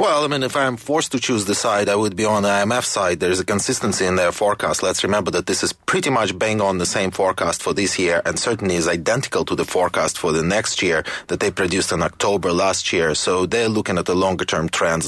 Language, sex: English, male